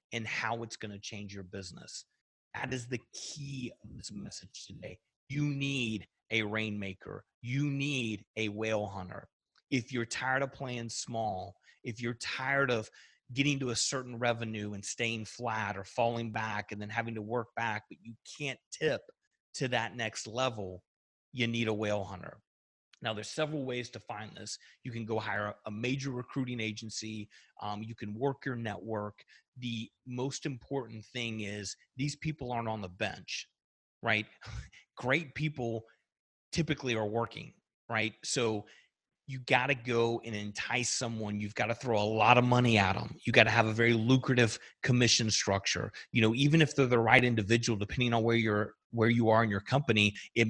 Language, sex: English, male